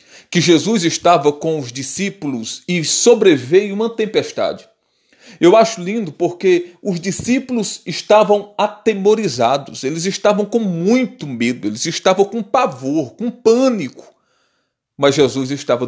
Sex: male